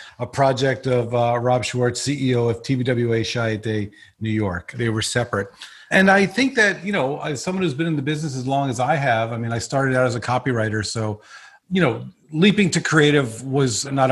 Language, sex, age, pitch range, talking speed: English, male, 40-59, 125-165 Hz, 215 wpm